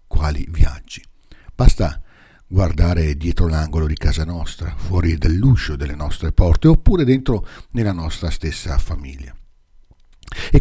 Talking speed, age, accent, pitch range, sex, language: 120 wpm, 60-79, native, 80-110 Hz, male, Italian